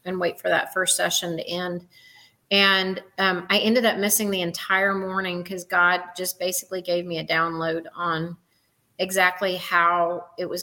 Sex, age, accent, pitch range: female, 30-49, American, 175-200 Hz